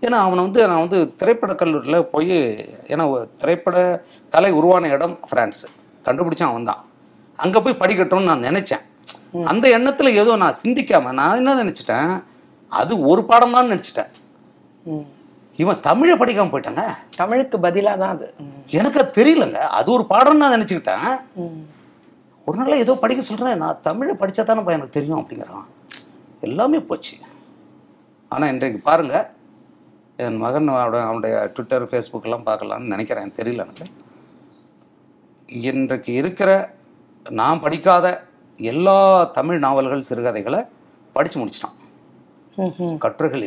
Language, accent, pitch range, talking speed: Tamil, native, 160-230 Hz, 115 wpm